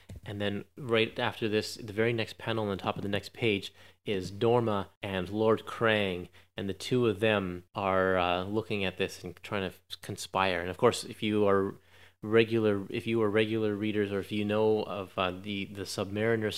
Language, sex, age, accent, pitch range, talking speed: English, male, 30-49, American, 95-115 Hz, 205 wpm